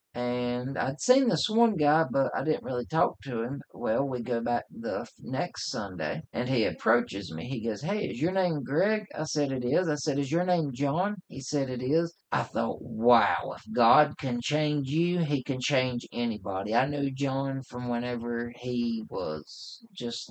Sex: male